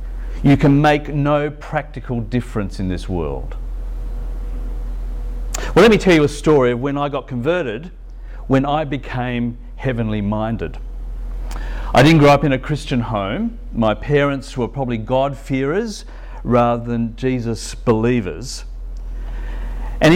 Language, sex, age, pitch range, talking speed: English, male, 50-69, 110-145 Hz, 130 wpm